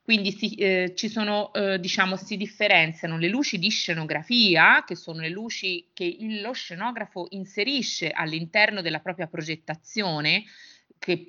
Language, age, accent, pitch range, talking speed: Italian, 30-49, native, 160-210 Hz, 140 wpm